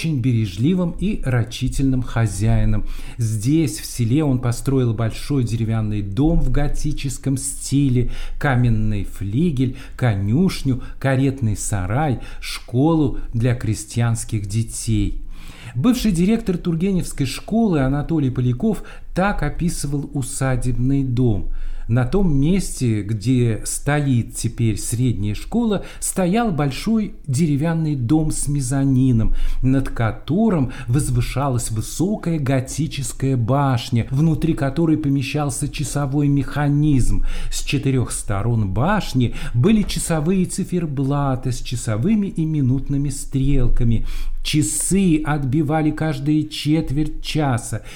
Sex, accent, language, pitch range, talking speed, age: male, native, Russian, 120-150 Hz, 95 wpm, 50-69